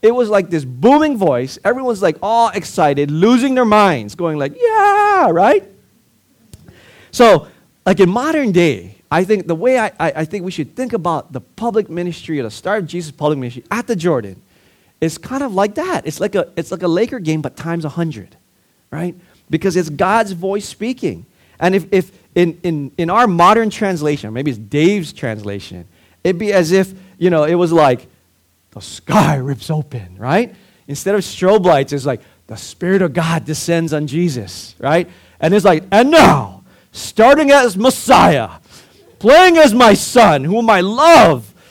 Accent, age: American, 30-49